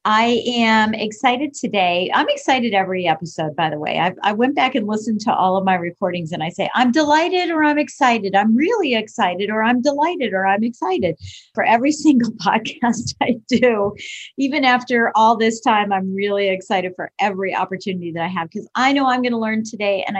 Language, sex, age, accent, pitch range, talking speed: English, female, 40-59, American, 195-250 Hz, 200 wpm